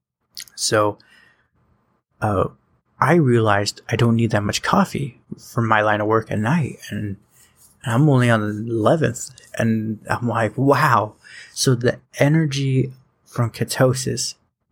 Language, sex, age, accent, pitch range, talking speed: English, male, 20-39, American, 110-130 Hz, 130 wpm